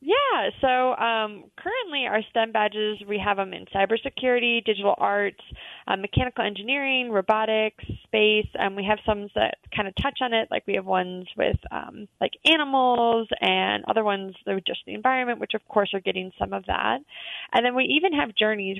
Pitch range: 195-240 Hz